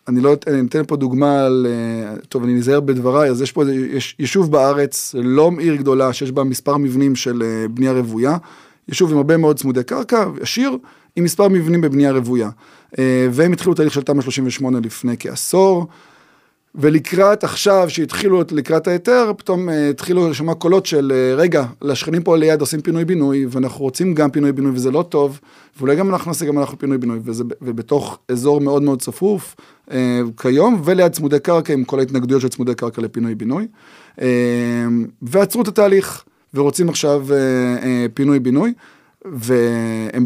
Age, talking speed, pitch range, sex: 20-39, 150 wpm, 130-170 Hz, male